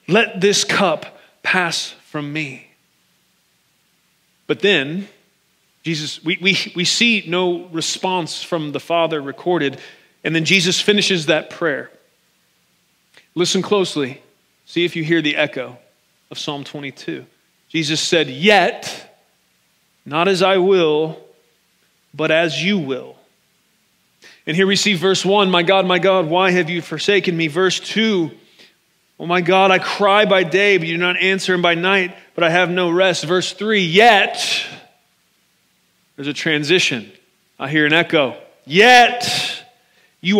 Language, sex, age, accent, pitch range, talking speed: English, male, 30-49, American, 160-200 Hz, 145 wpm